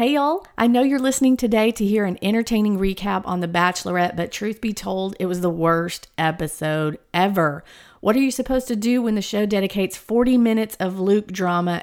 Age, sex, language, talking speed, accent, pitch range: 40-59, female, English, 205 wpm, American, 175-220 Hz